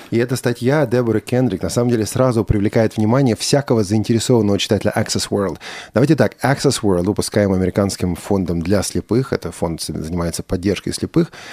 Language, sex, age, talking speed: Russian, male, 30-49, 155 wpm